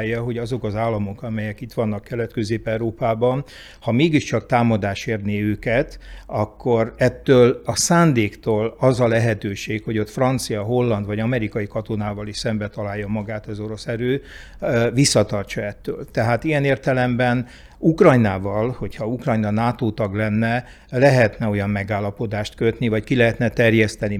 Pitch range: 105-125 Hz